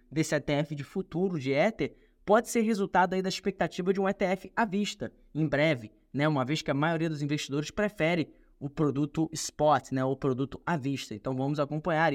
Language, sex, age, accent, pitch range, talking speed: Portuguese, male, 10-29, Brazilian, 145-185 Hz, 195 wpm